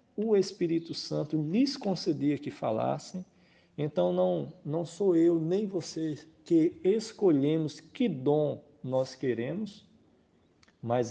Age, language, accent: 50-69, Portuguese, Brazilian